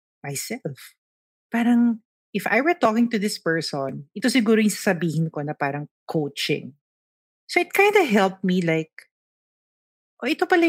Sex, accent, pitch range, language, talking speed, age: female, Filipino, 170-250 Hz, English, 150 wpm, 40-59